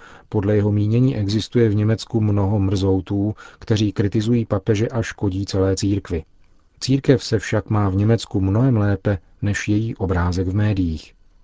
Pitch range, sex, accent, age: 95-110 Hz, male, native, 40-59